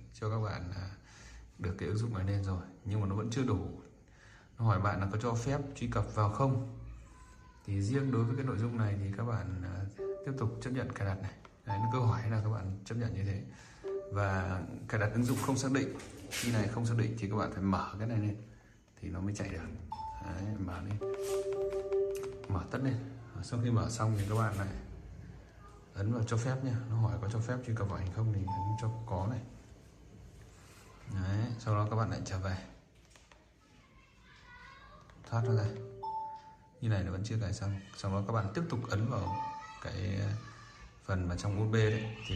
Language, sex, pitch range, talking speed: Vietnamese, male, 100-120 Hz, 210 wpm